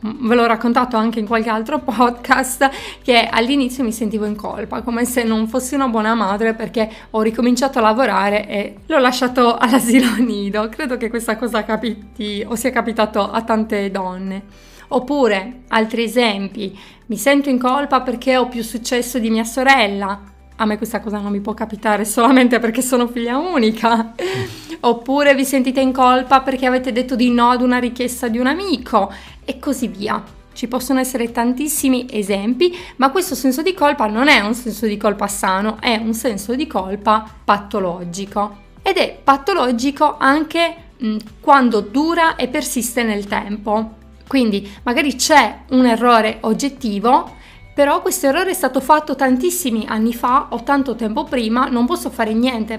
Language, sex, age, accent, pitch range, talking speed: Italian, female, 20-39, native, 220-265 Hz, 165 wpm